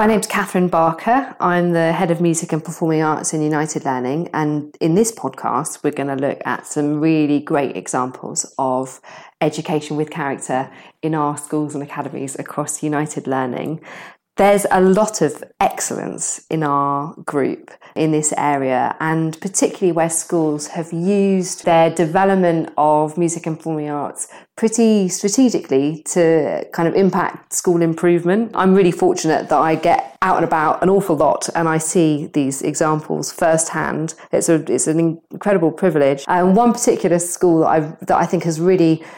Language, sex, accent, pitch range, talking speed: English, female, British, 155-185 Hz, 165 wpm